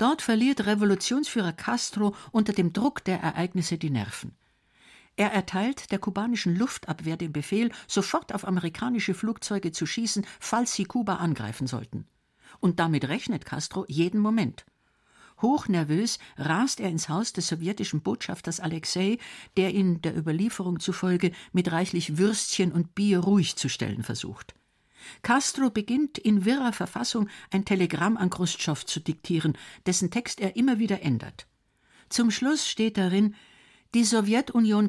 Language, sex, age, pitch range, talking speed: German, female, 60-79, 165-220 Hz, 140 wpm